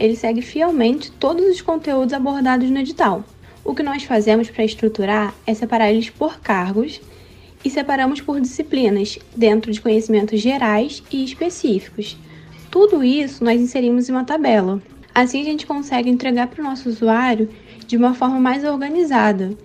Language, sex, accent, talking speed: Portuguese, female, Brazilian, 155 wpm